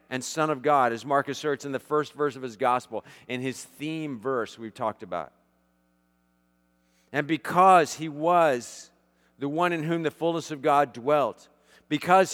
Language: English